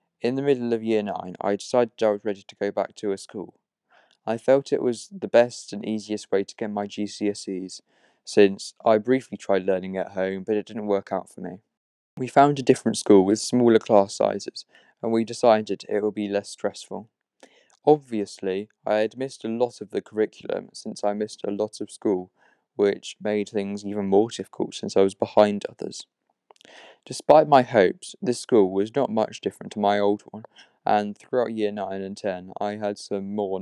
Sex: male